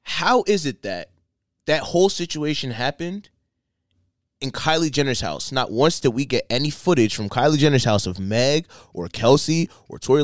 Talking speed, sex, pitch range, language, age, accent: 170 wpm, male, 115-160 Hz, English, 20-39, American